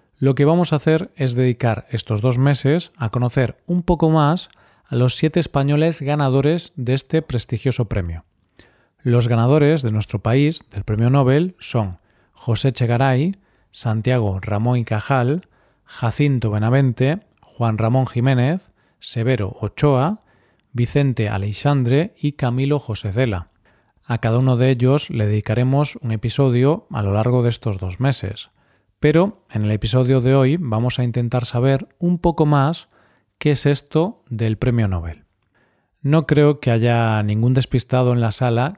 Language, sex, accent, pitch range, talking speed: Spanish, male, Spanish, 115-145 Hz, 150 wpm